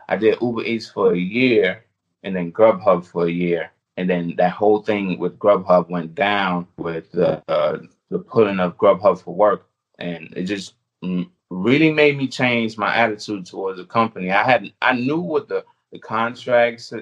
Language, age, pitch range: English, 30-49, 90-115 Hz